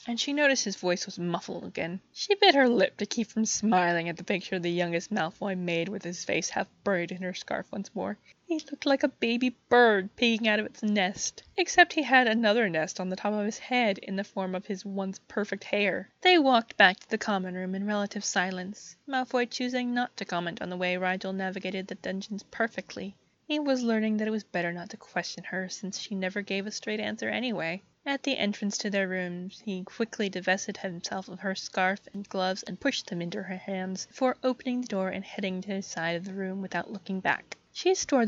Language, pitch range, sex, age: English, 185-235 Hz, female, 20-39